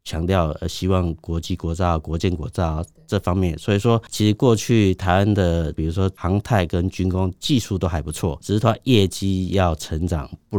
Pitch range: 85-105 Hz